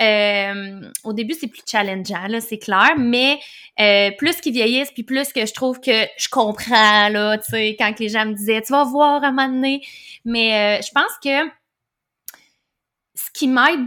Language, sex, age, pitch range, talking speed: French, female, 20-39, 215-270 Hz, 200 wpm